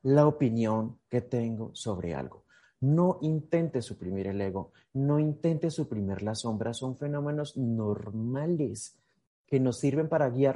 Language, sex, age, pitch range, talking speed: Spanish, male, 30-49, 120-155 Hz, 135 wpm